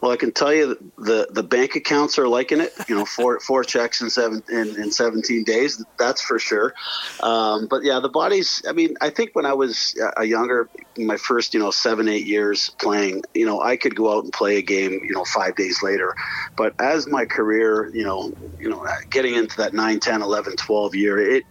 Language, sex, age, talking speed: English, male, 40-59, 225 wpm